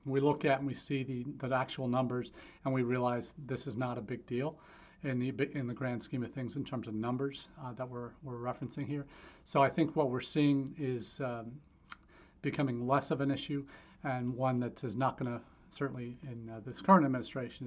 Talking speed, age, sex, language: 215 wpm, 40-59, male, English